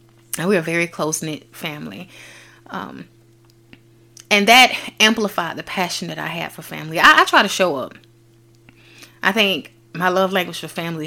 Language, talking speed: English, 165 wpm